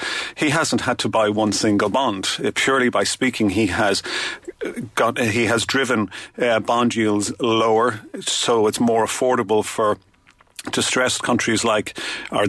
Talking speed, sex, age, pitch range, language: 140 wpm, male, 40-59, 110-125 Hz, English